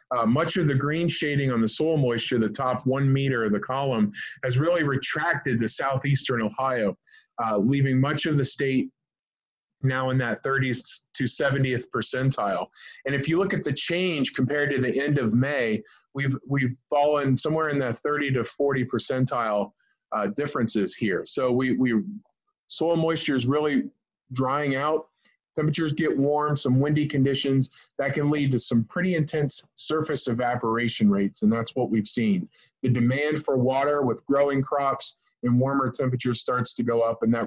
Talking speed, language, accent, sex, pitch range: 175 wpm, English, American, male, 125-150 Hz